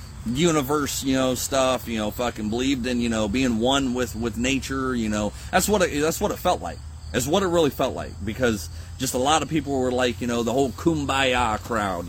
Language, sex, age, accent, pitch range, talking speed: English, male, 30-49, American, 95-130 Hz, 220 wpm